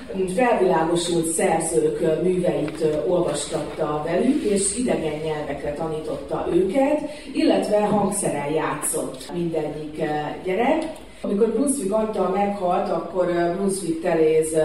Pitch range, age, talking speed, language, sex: 155-195 Hz, 30-49, 90 wpm, Hungarian, female